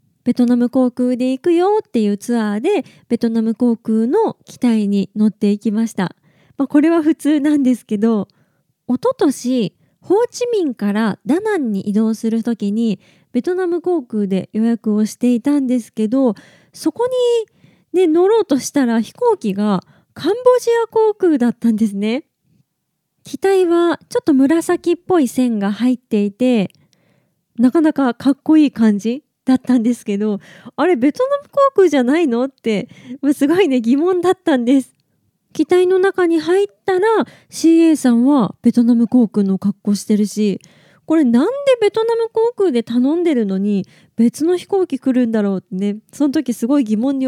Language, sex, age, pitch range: Japanese, female, 20-39, 215-315 Hz